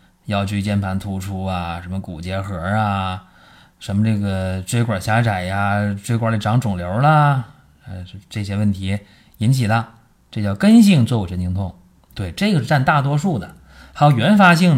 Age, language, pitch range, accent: 20-39, Chinese, 95-135 Hz, native